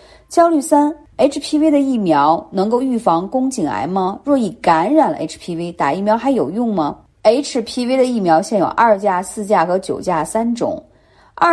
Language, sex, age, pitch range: Chinese, female, 30-49, 185-275 Hz